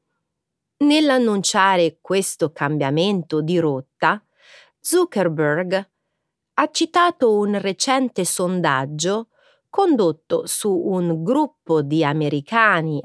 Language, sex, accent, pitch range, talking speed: Italian, female, native, 160-250 Hz, 80 wpm